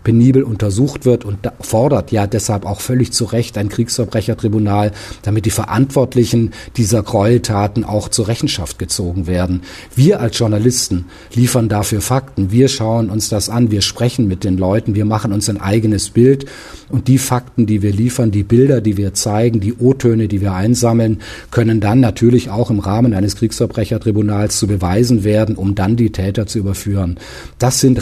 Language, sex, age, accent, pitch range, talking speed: German, male, 40-59, German, 105-120 Hz, 170 wpm